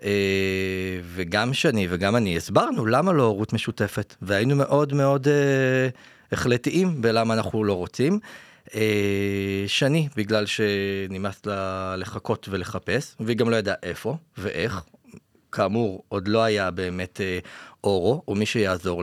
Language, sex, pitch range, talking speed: Hebrew, male, 100-130 Hz, 130 wpm